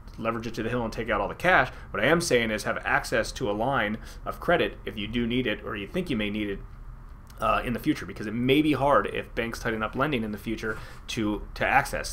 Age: 30-49